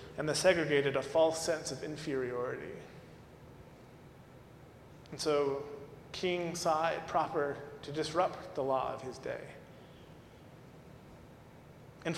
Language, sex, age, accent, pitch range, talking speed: English, male, 30-49, American, 145-185 Hz, 110 wpm